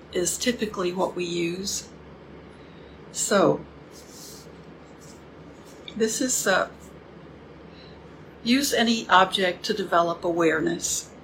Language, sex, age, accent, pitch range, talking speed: English, female, 60-79, American, 175-225 Hz, 80 wpm